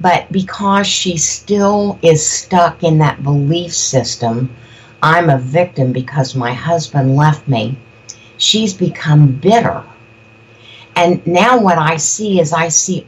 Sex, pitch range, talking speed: female, 125-170 Hz, 135 wpm